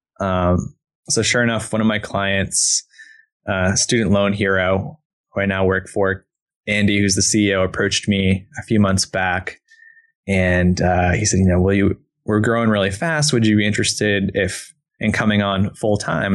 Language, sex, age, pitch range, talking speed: English, male, 20-39, 95-110 Hz, 180 wpm